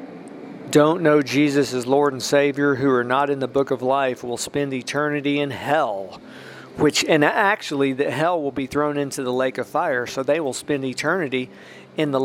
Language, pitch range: English, 130-155 Hz